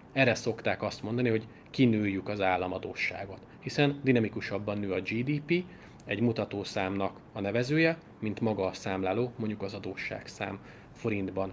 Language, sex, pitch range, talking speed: Hungarian, male, 100-120 Hz, 130 wpm